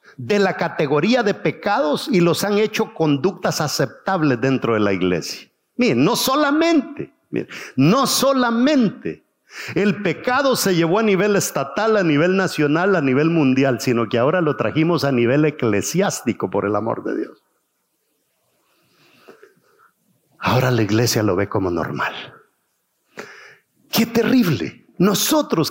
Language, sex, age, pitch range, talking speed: English, male, 50-69, 145-245 Hz, 135 wpm